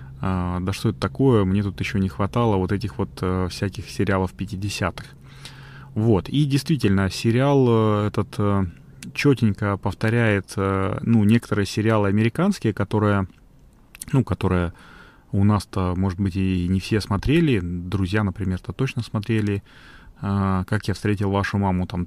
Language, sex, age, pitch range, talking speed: Russian, male, 30-49, 95-120 Hz, 130 wpm